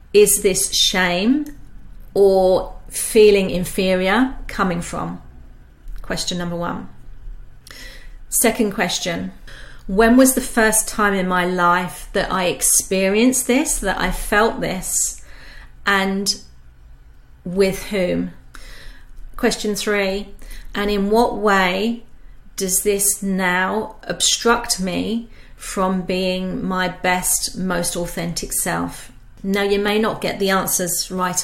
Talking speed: 110 wpm